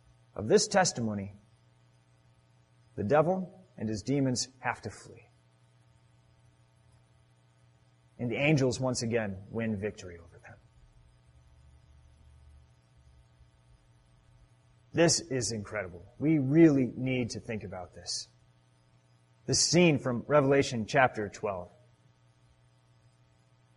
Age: 30-49